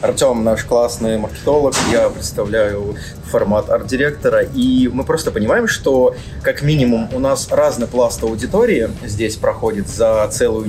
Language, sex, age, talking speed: Russian, male, 20-39, 135 wpm